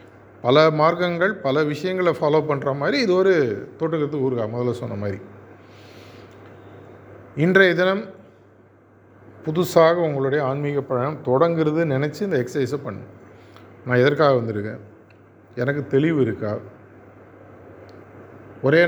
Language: Tamil